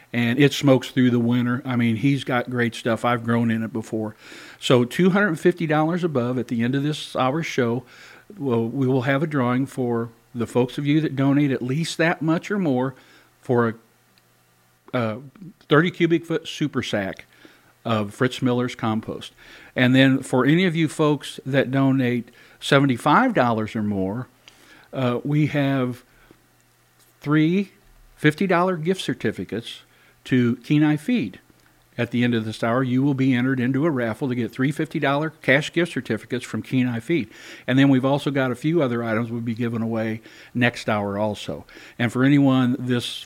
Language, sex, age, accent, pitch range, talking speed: English, male, 50-69, American, 115-140 Hz, 165 wpm